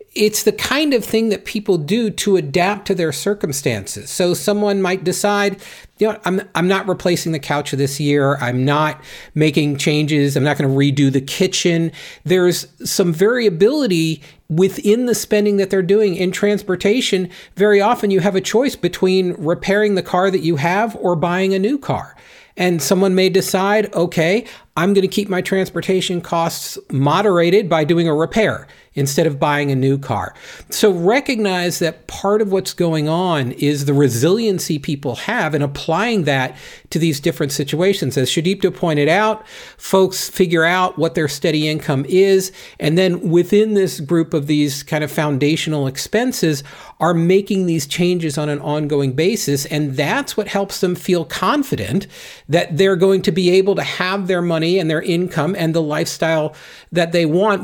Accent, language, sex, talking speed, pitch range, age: American, English, male, 175 wpm, 150-195 Hz, 40-59